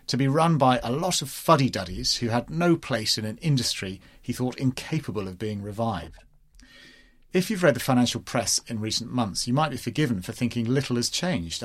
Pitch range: 100-130 Hz